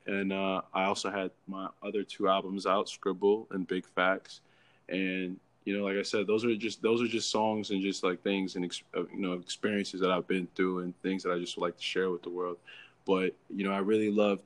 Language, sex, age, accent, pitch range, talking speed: English, male, 20-39, American, 90-100 Hz, 235 wpm